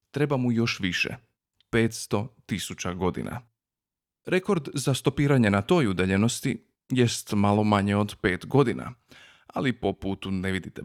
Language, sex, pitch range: Croatian, male, 105-140 Hz